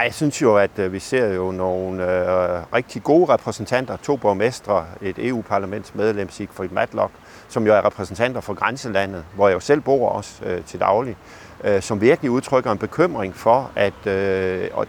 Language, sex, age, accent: Danish, male, 50-69, native